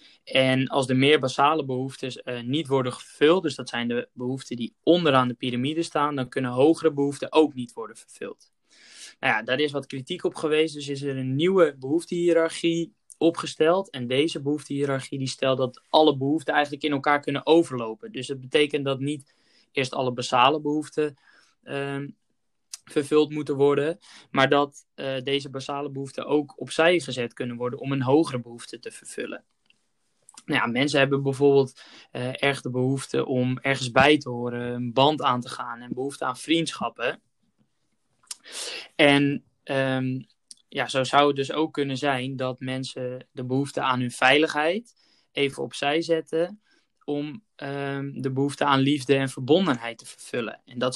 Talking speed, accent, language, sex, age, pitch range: 160 wpm, Dutch, Dutch, male, 20-39, 130-150 Hz